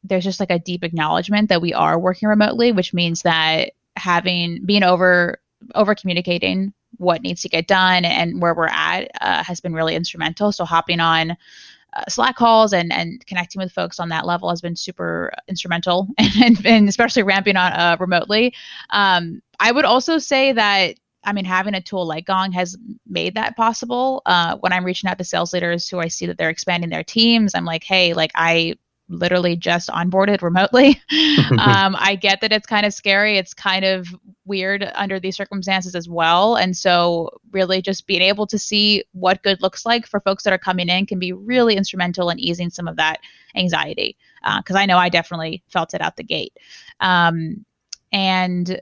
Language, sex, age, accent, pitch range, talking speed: English, female, 20-39, American, 175-205 Hz, 195 wpm